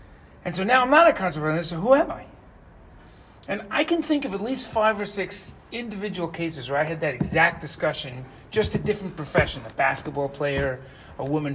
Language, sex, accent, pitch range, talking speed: English, male, American, 140-180 Hz, 205 wpm